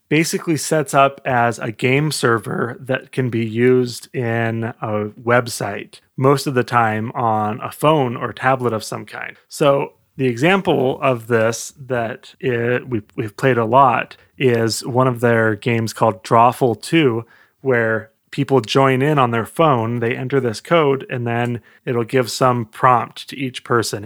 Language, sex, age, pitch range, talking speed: English, male, 30-49, 115-140 Hz, 165 wpm